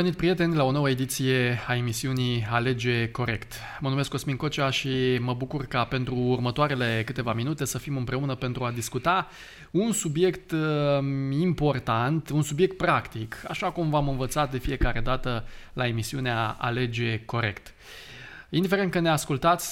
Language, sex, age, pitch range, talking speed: Romanian, male, 20-39, 125-160 Hz, 150 wpm